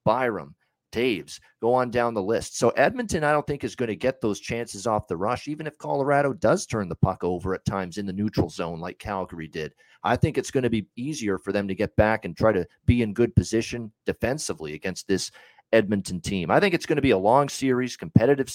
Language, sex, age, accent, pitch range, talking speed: English, male, 40-59, American, 95-125 Hz, 235 wpm